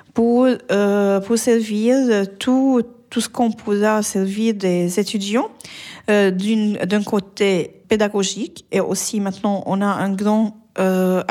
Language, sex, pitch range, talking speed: French, female, 190-220 Hz, 135 wpm